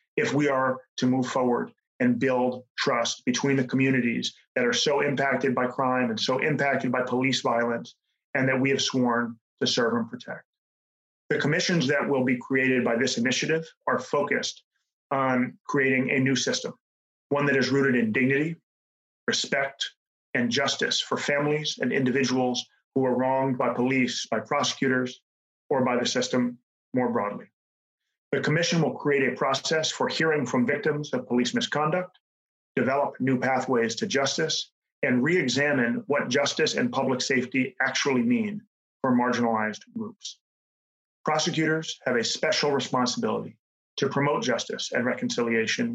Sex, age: male, 30-49